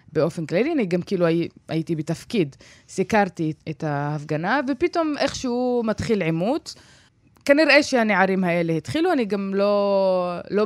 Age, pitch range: 20-39, 170-225 Hz